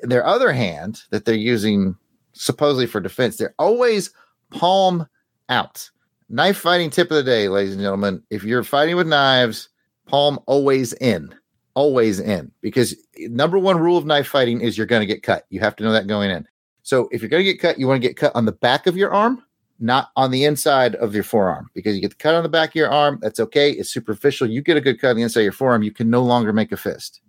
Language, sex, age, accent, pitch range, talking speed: English, male, 30-49, American, 110-150 Hz, 240 wpm